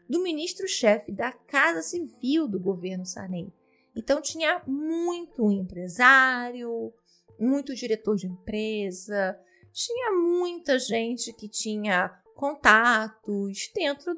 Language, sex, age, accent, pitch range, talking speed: Portuguese, female, 20-39, Brazilian, 210-315 Hz, 95 wpm